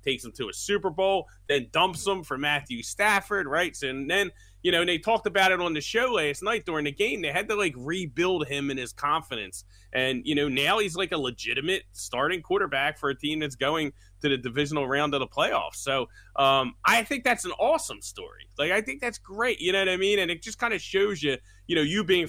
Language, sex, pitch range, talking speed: English, male, 130-170 Hz, 240 wpm